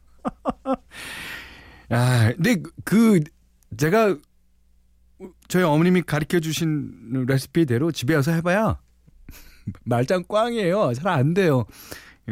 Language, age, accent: Korean, 40-59, native